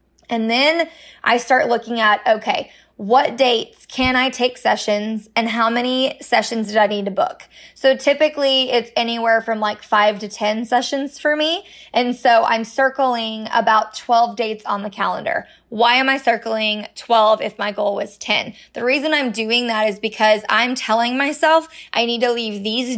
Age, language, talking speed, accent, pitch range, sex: 20-39, English, 180 wpm, American, 220-265 Hz, female